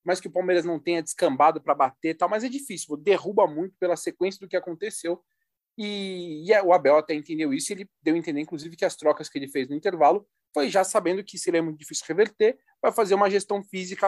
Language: Portuguese